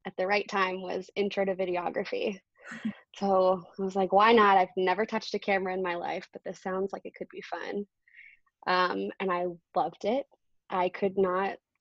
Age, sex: 20-39, female